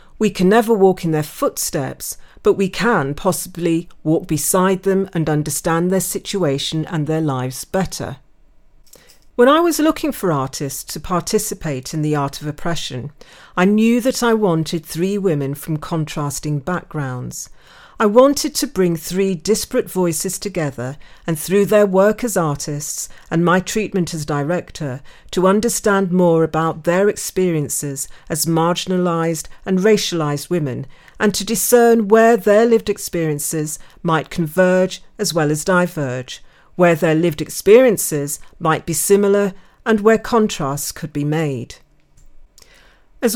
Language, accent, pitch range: English, British, 155-200 Hz